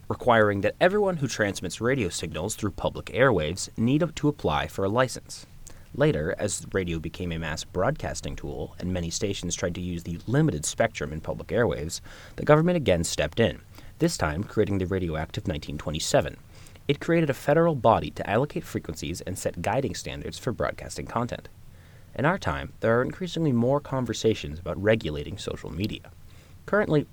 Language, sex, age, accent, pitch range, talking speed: English, male, 30-49, American, 85-125 Hz, 170 wpm